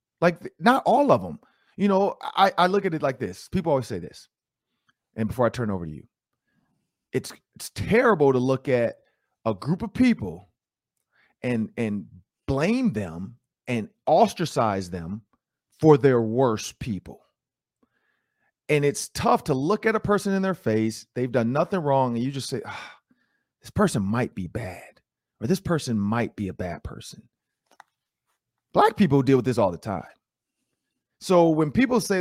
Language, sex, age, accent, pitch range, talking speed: English, male, 40-59, American, 110-165 Hz, 170 wpm